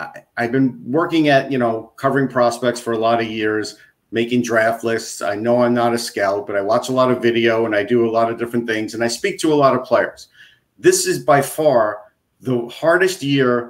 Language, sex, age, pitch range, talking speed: English, male, 50-69, 125-160 Hz, 230 wpm